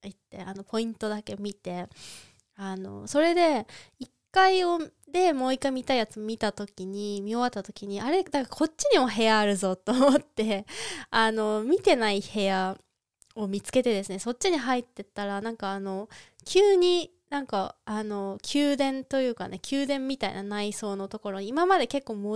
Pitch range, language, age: 200-285 Hz, Japanese, 20-39